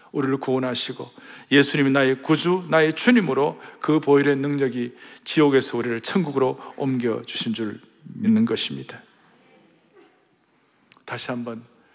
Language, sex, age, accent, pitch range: Korean, male, 40-59, native, 135-170 Hz